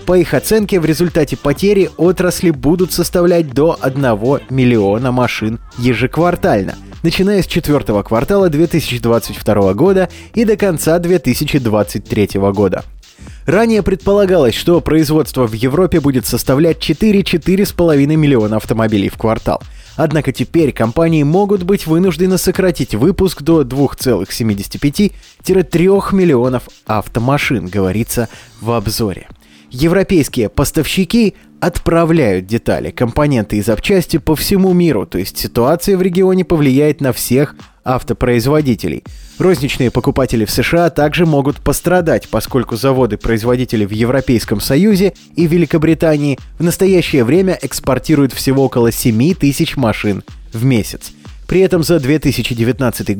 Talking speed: 115 wpm